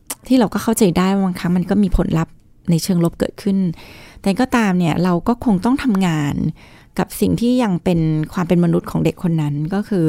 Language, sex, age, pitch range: Thai, female, 20-39, 165-205 Hz